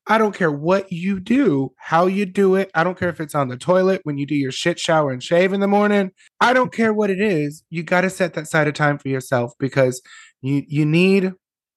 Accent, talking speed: American, 250 wpm